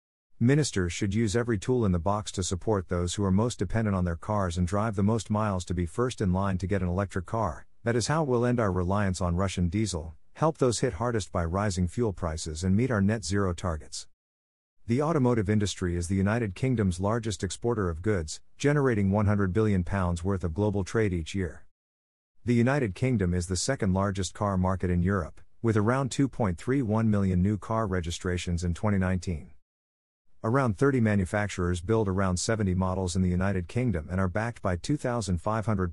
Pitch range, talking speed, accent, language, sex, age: 90-115 Hz, 185 wpm, American, English, male, 50-69